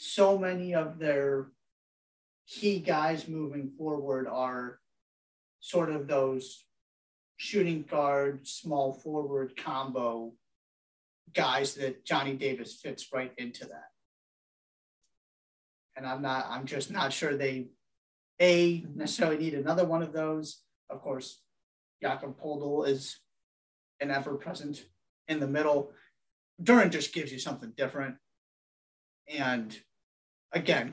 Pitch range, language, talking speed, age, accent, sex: 125-150 Hz, English, 115 wpm, 30-49, American, male